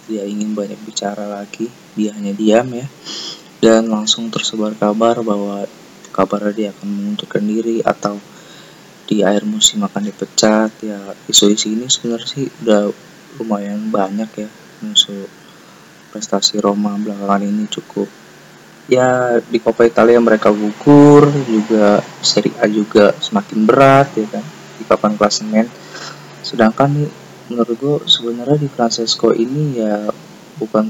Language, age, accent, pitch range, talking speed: Indonesian, 20-39, native, 105-125 Hz, 130 wpm